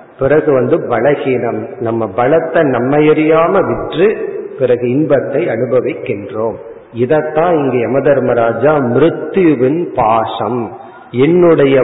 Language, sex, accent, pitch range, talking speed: Tamil, male, native, 125-175 Hz, 65 wpm